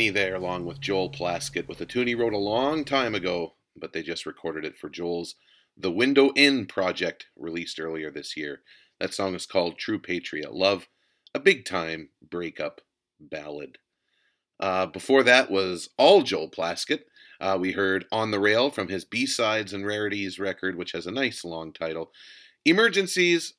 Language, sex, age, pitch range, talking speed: English, male, 30-49, 90-130 Hz, 170 wpm